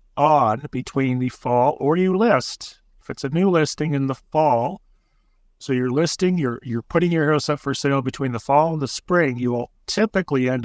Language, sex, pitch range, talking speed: English, male, 120-150 Hz, 205 wpm